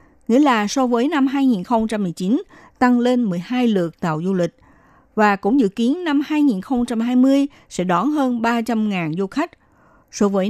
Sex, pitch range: female, 190-250 Hz